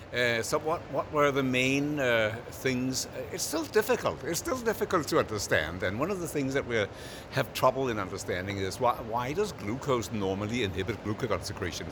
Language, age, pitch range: English, 60-79, 95-120 Hz